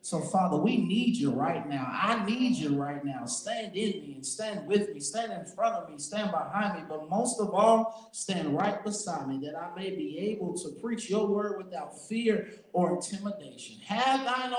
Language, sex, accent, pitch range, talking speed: English, male, American, 170-245 Hz, 205 wpm